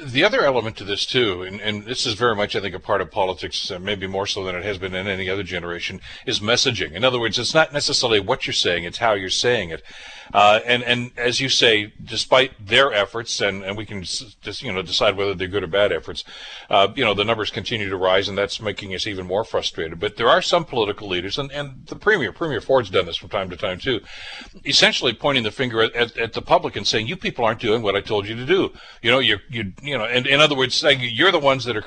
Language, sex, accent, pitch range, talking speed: English, male, American, 105-135 Hz, 265 wpm